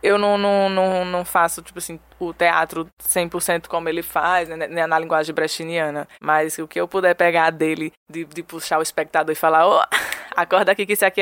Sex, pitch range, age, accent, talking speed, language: female, 160-185 Hz, 20-39, Brazilian, 200 wpm, Portuguese